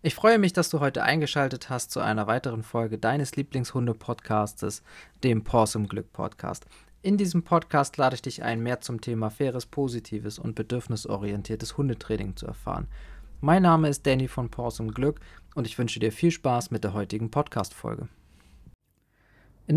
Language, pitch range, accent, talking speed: German, 120-155 Hz, German, 150 wpm